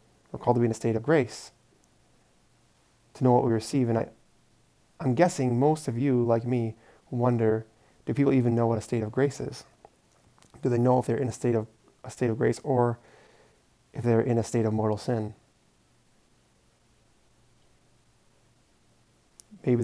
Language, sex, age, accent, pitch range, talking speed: English, male, 20-39, American, 115-130 Hz, 170 wpm